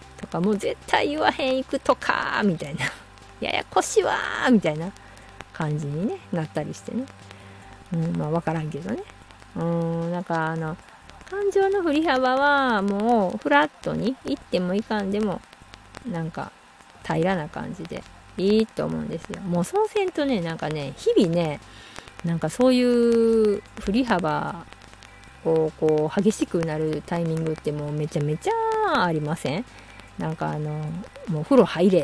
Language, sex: Japanese, female